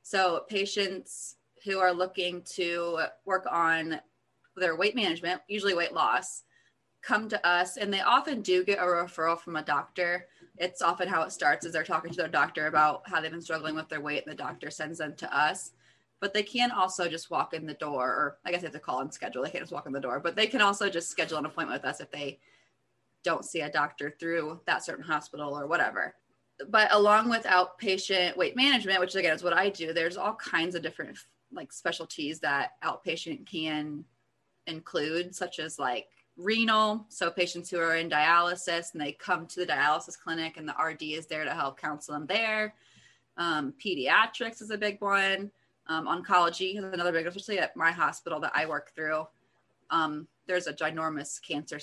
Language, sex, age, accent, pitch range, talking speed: English, female, 20-39, American, 155-190 Hz, 205 wpm